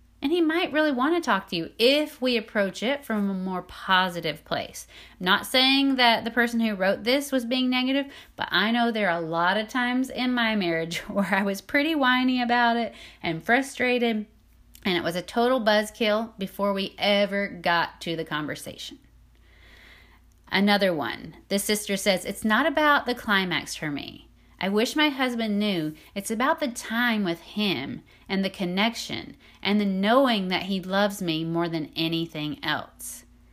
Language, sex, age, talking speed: English, female, 30-49, 180 wpm